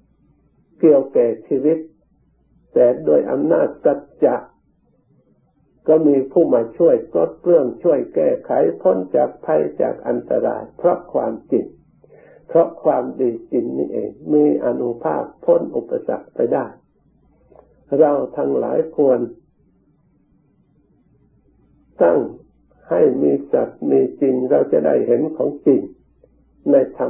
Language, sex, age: Thai, male, 60-79